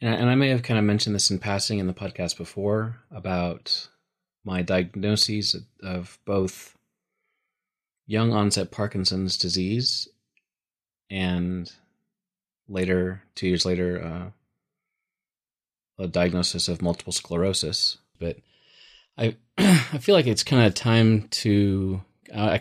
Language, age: English, 30-49